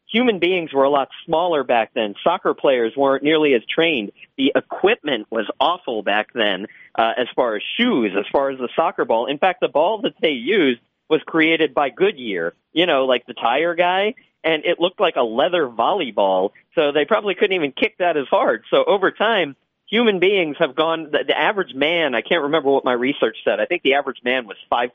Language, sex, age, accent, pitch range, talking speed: English, male, 40-59, American, 135-180 Hz, 215 wpm